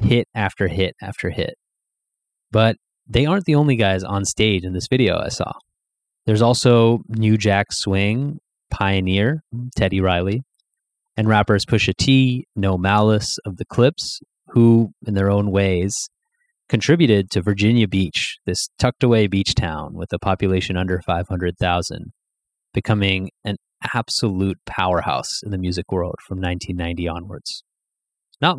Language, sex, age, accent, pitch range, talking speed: English, male, 20-39, American, 95-115 Hz, 140 wpm